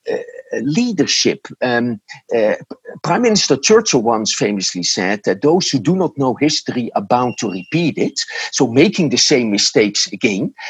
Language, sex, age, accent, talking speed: English, male, 50-69, Dutch, 155 wpm